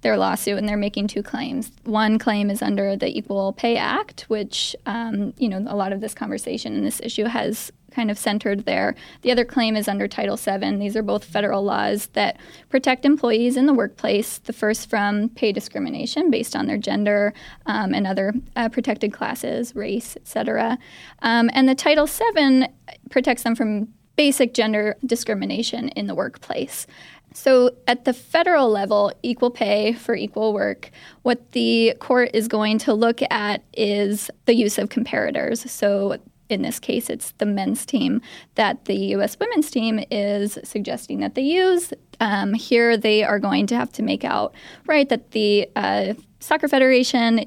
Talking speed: 175 wpm